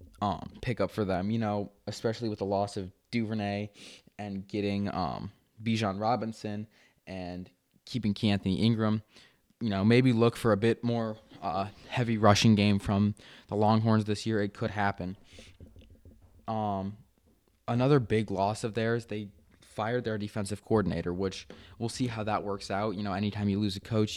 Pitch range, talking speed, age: 100-115 Hz, 170 wpm, 20-39